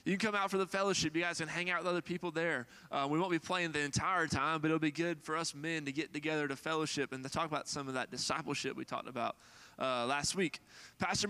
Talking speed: 270 wpm